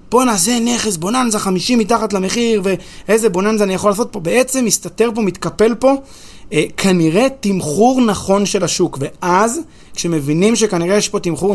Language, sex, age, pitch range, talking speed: Hebrew, male, 30-49, 170-230 Hz, 155 wpm